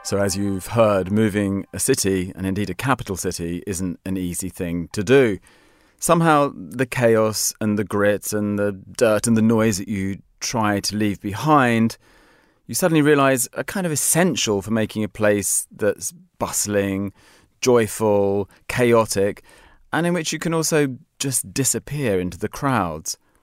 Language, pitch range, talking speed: English, 95-120 Hz, 160 wpm